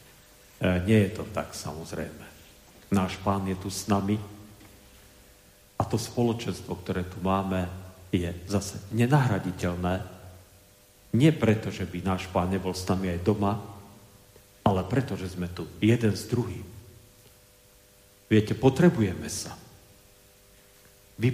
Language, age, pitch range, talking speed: Slovak, 40-59, 95-110 Hz, 120 wpm